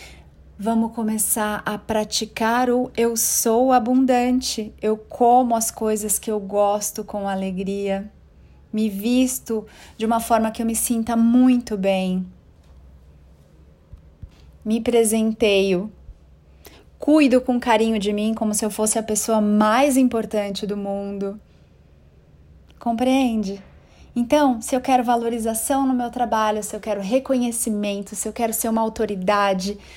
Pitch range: 195-245 Hz